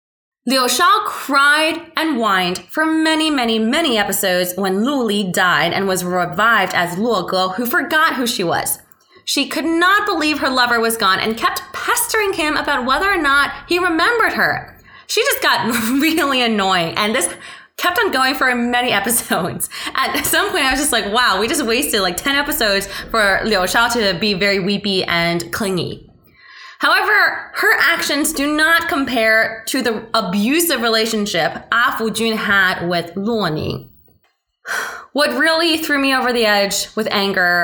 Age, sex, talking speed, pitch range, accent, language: 20-39, female, 165 wpm, 200-305 Hz, American, English